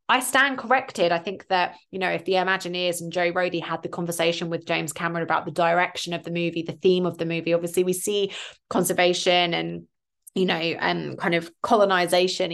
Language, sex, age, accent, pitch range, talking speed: English, female, 20-39, British, 165-185 Hz, 205 wpm